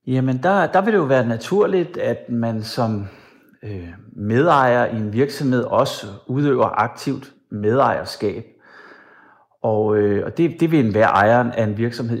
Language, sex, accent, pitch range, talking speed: Danish, male, native, 105-135 Hz, 150 wpm